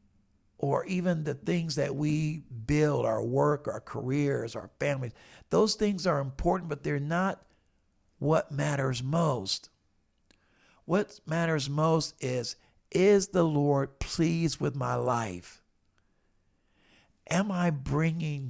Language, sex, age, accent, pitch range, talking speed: English, male, 50-69, American, 125-175 Hz, 120 wpm